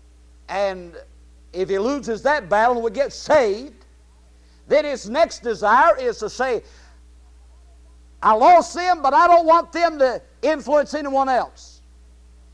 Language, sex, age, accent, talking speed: English, male, 60-79, American, 135 wpm